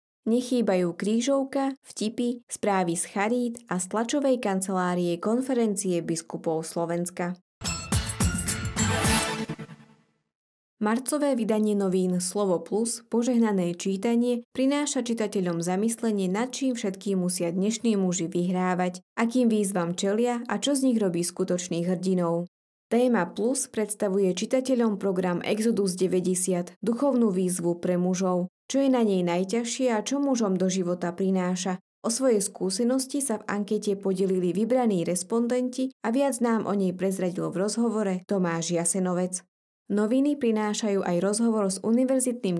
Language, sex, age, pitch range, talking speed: Slovak, female, 20-39, 180-235 Hz, 125 wpm